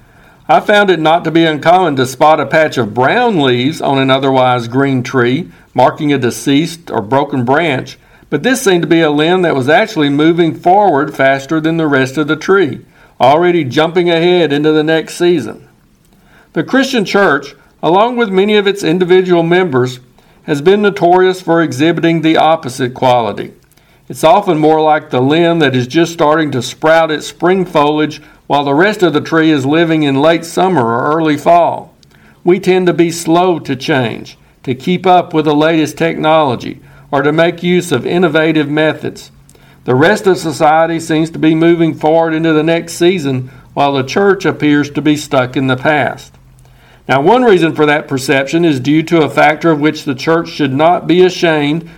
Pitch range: 140-170 Hz